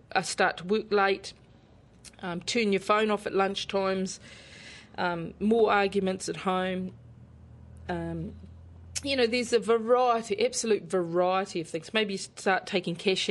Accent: Australian